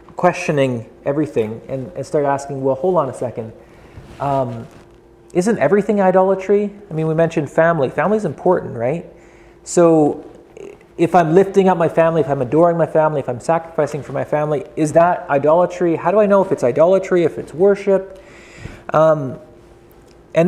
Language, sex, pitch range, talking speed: English, male, 125-175 Hz, 165 wpm